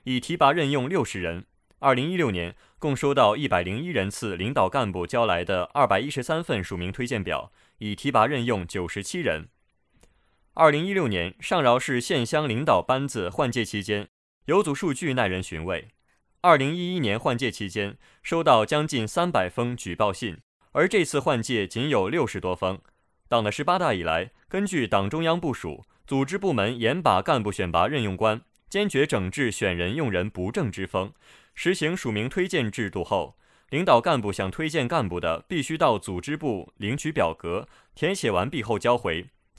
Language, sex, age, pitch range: Chinese, male, 20-39, 100-150 Hz